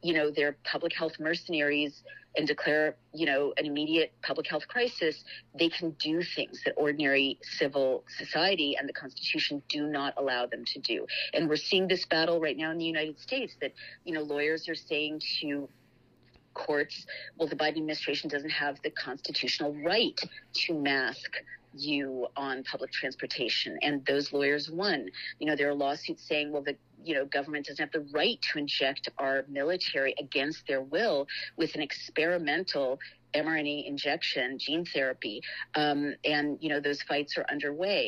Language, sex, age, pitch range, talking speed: English, female, 40-59, 140-160 Hz, 170 wpm